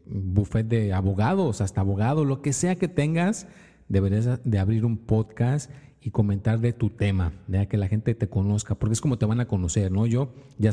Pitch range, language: 100-130 Hz, Spanish